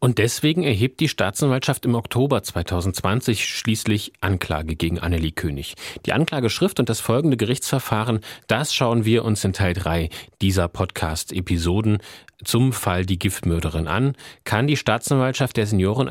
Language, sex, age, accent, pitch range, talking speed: German, male, 40-59, German, 90-120 Hz, 140 wpm